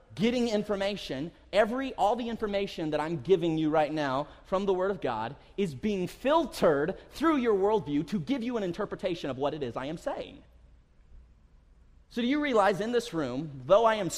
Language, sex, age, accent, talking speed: English, male, 30-49, American, 190 wpm